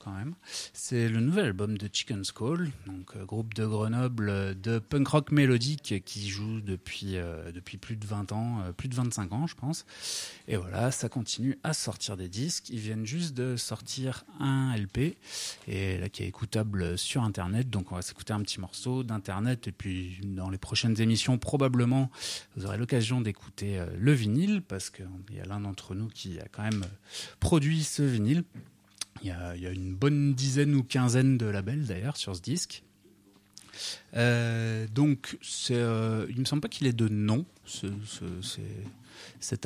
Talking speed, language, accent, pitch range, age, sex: 185 wpm, French, French, 100-130 Hz, 30-49, male